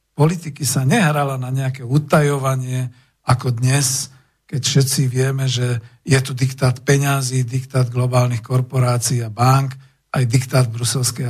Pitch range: 125-145 Hz